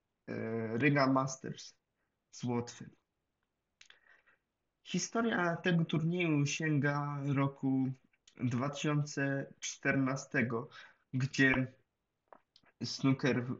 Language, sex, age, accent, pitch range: Polish, male, 20-39, native, 125-145 Hz